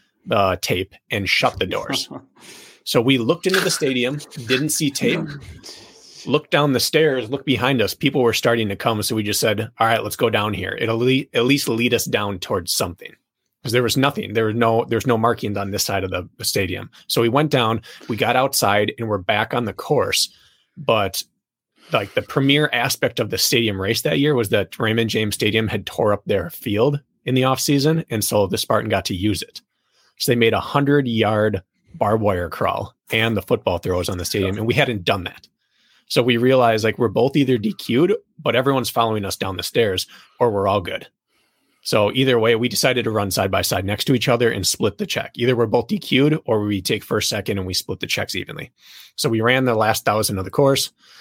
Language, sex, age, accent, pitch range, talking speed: English, male, 30-49, American, 105-130 Hz, 220 wpm